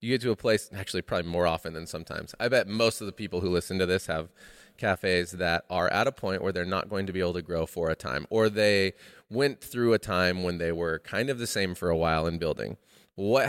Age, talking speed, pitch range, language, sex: 30-49, 265 wpm, 90-110 Hz, English, male